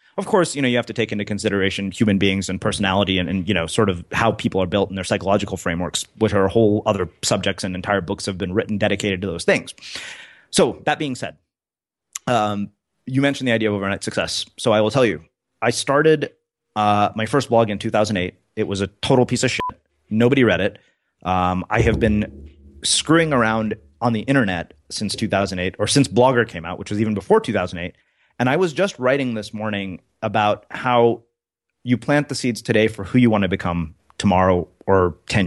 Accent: American